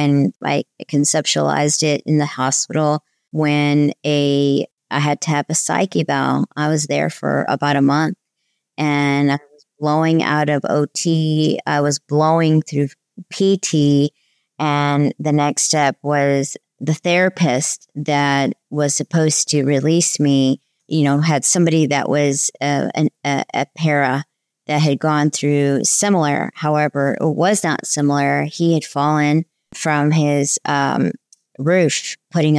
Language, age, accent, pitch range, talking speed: English, 40-59, American, 145-160 Hz, 140 wpm